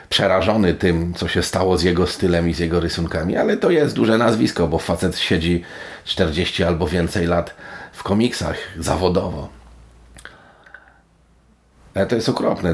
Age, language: 40-59, Polish